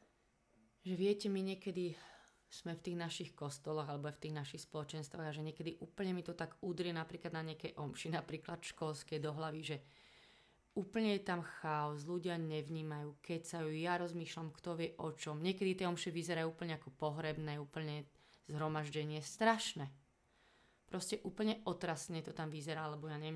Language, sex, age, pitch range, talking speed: Slovak, female, 20-39, 155-175 Hz, 160 wpm